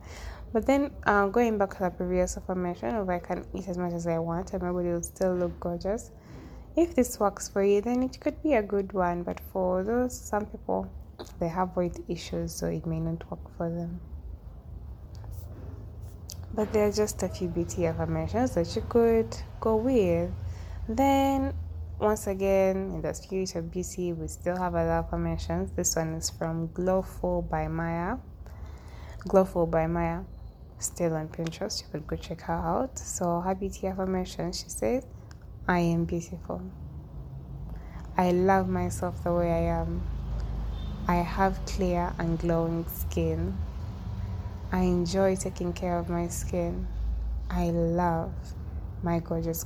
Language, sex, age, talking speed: English, female, 20-39, 160 wpm